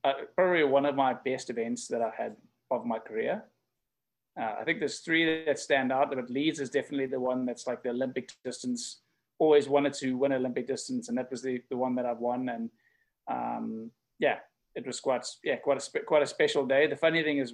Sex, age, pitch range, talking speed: male, 20-39, 130-155 Hz, 220 wpm